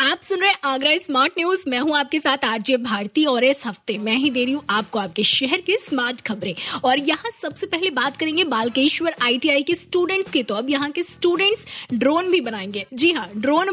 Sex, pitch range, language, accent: female, 250-315 Hz, Hindi, native